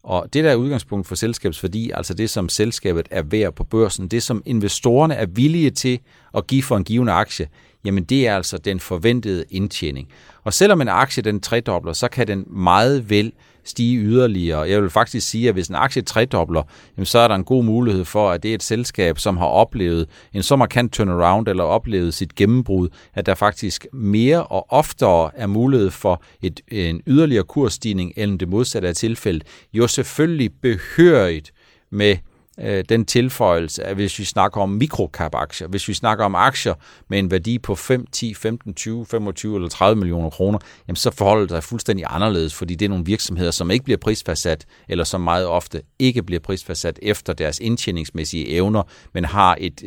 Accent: native